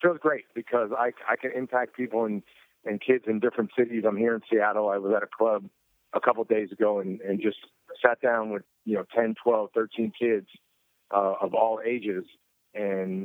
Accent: American